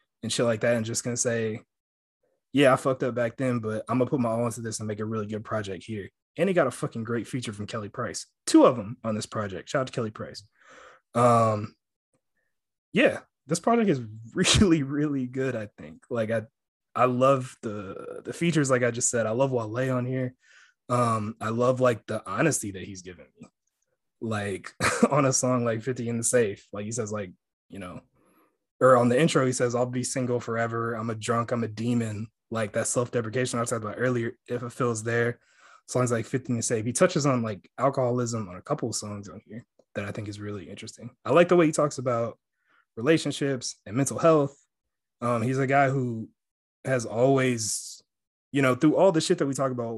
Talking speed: 215 wpm